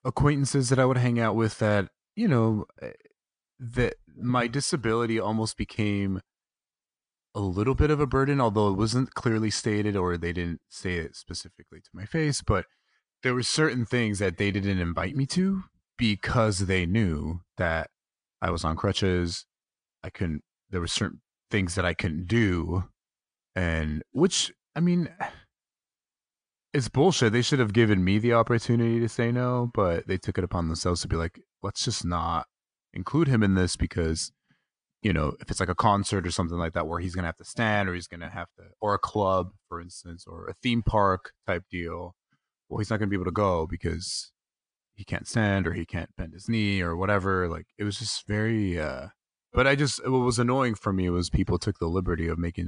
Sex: male